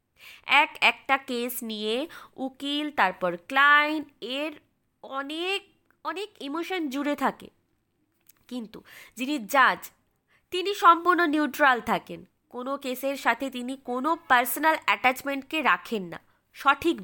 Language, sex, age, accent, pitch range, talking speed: Bengali, female, 20-39, native, 220-300 Hz, 105 wpm